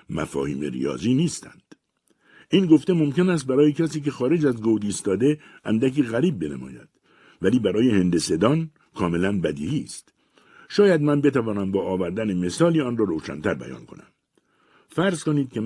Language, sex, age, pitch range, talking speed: Persian, male, 60-79, 95-150 Hz, 140 wpm